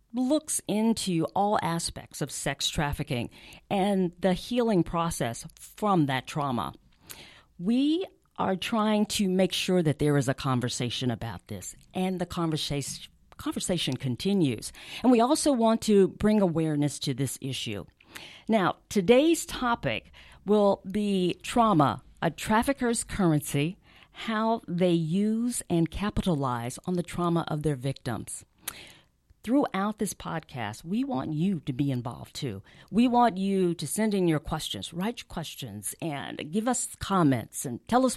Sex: female